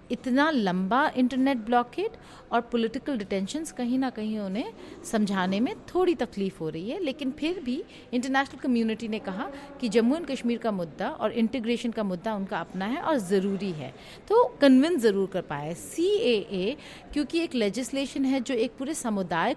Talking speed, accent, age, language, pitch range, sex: 170 wpm, native, 40-59, Hindi, 200-265 Hz, female